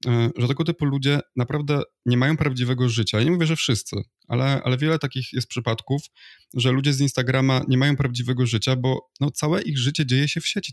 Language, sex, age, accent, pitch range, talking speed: Polish, male, 20-39, native, 115-140 Hz, 200 wpm